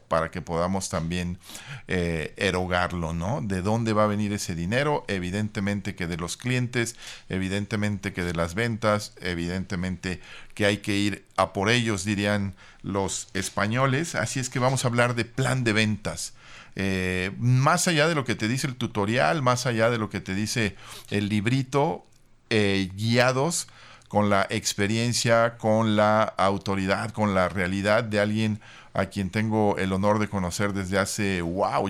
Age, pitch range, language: 50-69, 95-110 Hz, Spanish